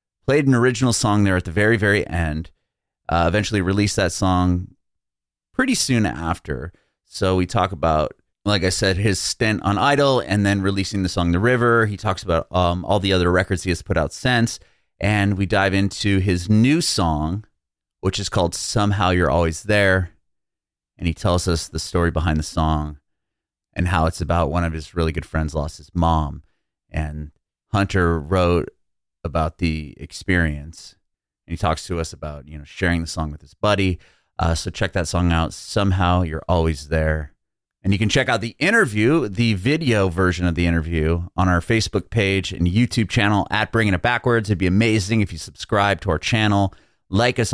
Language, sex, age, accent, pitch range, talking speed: English, male, 30-49, American, 85-105 Hz, 190 wpm